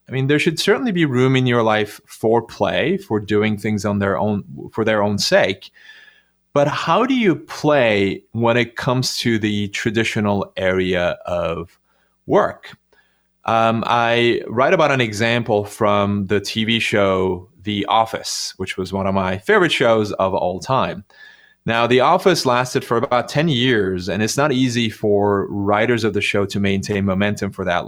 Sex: male